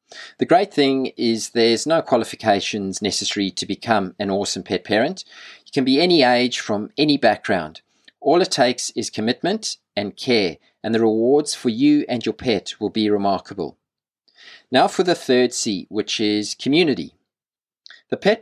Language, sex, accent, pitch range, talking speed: English, male, Australian, 105-135 Hz, 165 wpm